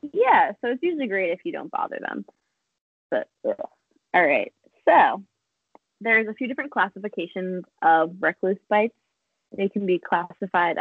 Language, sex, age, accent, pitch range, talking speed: English, female, 20-39, American, 170-215 Hz, 145 wpm